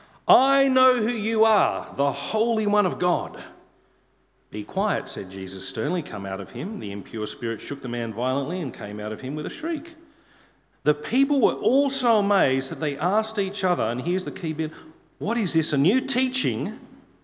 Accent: Australian